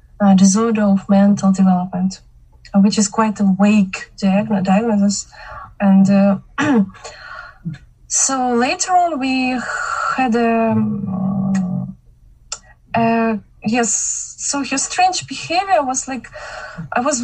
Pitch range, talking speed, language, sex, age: 200-250 Hz, 95 wpm, English, female, 20-39